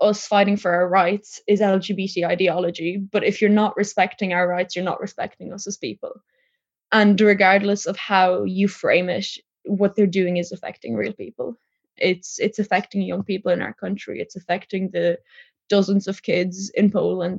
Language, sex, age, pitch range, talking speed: English, female, 10-29, 190-215 Hz, 175 wpm